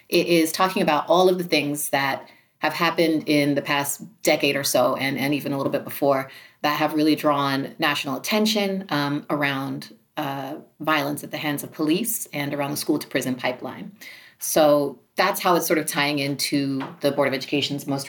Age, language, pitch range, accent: 30-49, English, 140-160 Hz, American